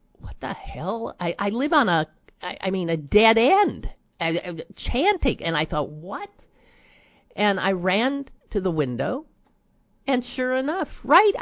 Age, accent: 50-69, American